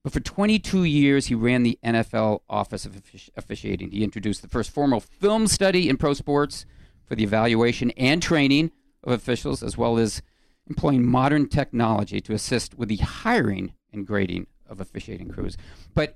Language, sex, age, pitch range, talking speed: English, male, 50-69, 105-140 Hz, 165 wpm